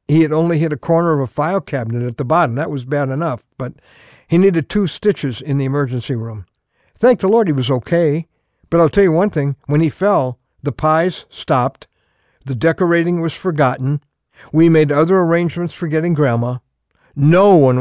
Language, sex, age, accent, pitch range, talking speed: English, male, 60-79, American, 130-175 Hz, 190 wpm